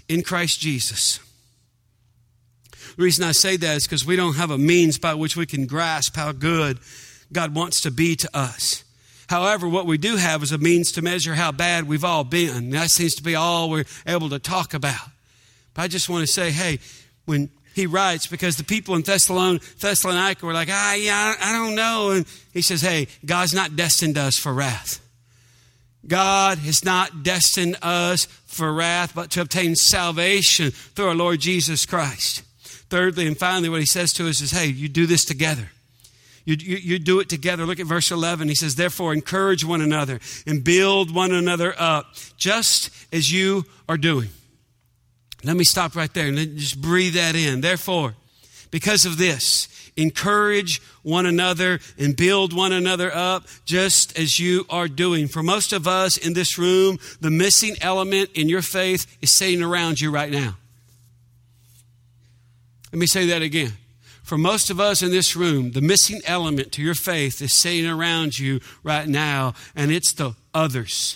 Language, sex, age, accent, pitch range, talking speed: English, male, 50-69, American, 140-180 Hz, 185 wpm